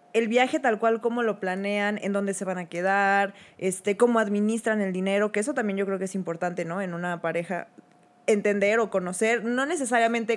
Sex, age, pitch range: female, 20-39, 185-235 Hz